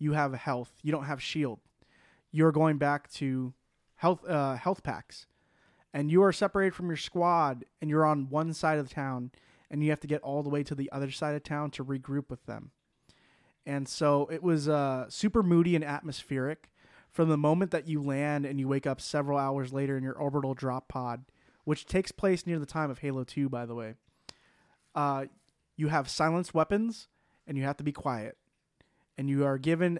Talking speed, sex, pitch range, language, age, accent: 205 wpm, male, 135-160 Hz, English, 20-39, American